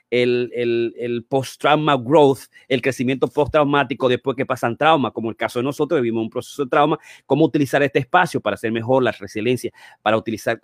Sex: male